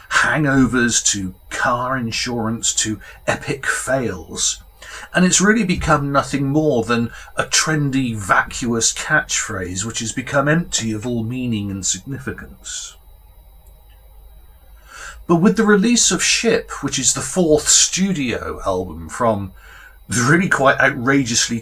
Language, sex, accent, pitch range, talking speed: English, male, British, 100-150 Hz, 120 wpm